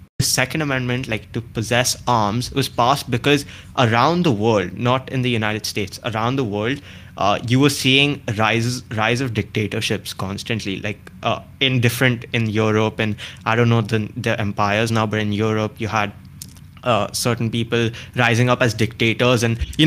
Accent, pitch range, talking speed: Indian, 110-125 Hz, 170 wpm